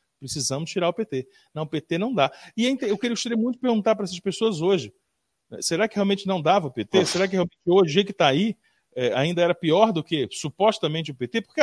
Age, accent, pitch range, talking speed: 40-59, Brazilian, 145-220 Hz, 215 wpm